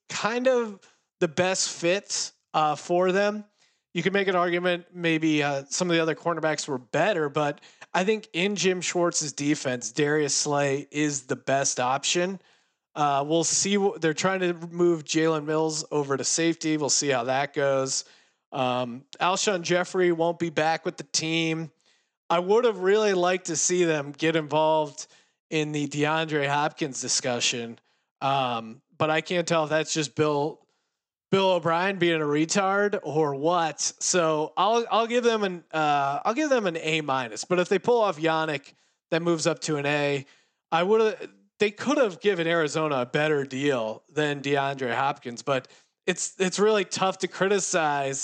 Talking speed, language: 170 wpm, English